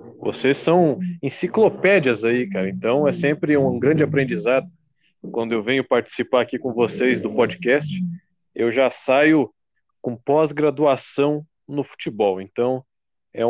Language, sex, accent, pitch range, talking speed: Portuguese, male, Brazilian, 120-150 Hz, 130 wpm